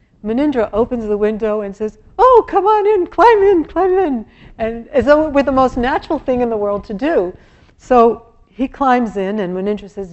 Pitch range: 190-235 Hz